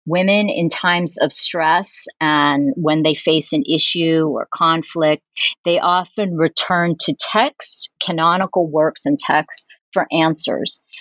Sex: female